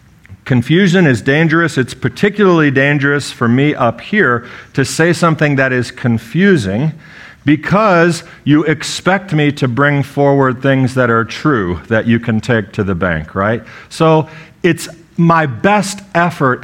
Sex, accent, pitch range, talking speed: male, American, 120-175 Hz, 145 wpm